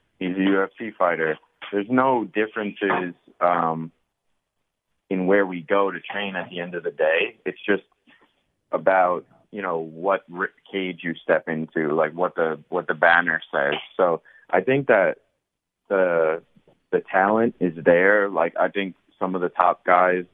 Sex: male